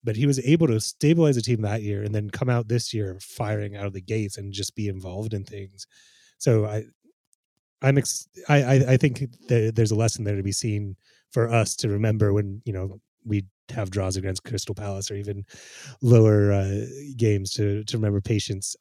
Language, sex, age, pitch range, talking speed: English, male, 30-49, 100-135 Hz, 205 wpm